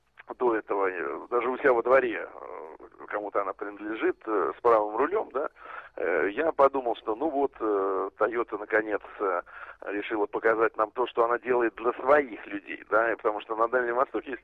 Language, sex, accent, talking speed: Russian, male, native, 160 wpm